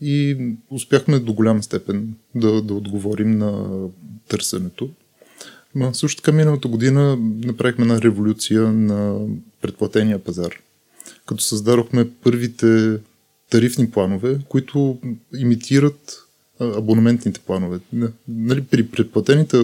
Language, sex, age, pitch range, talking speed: Bulgarian, male, 20-39, 110-145 Hz, 100 wpm